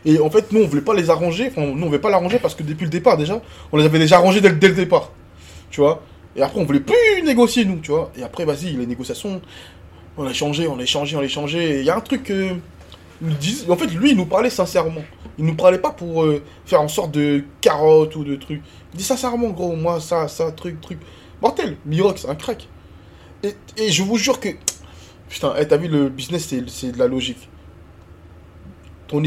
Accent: French